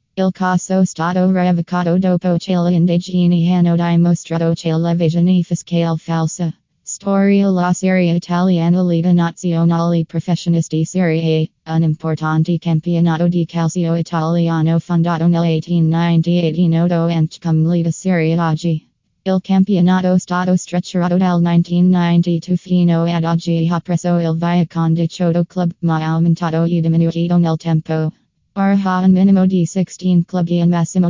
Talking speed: 125 wpm